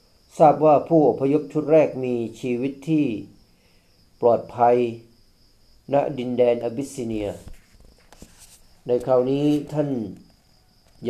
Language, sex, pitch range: Thai, male, 100-140 Hz